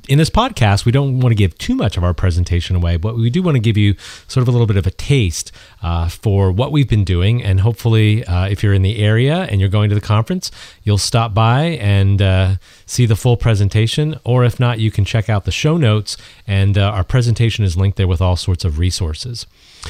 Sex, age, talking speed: male, 30-49, 240 wpm